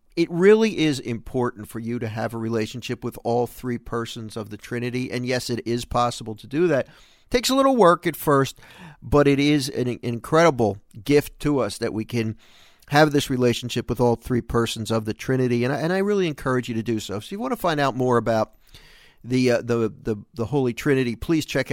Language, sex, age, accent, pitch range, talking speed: English, male, 50-69, American, 115-140 Hz, 220 wpm